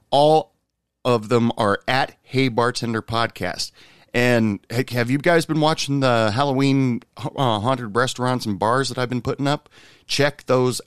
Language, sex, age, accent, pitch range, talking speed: English, male, 40-59, American, 100-125 Hz, 150 wpm